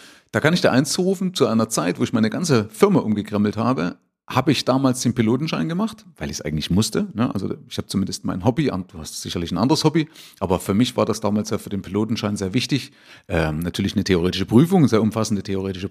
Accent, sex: German, male